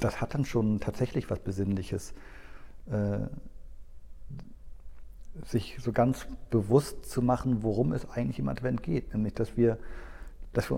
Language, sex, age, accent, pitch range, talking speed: German, male, 50-69, German, 100-130 Hz, 130 wpm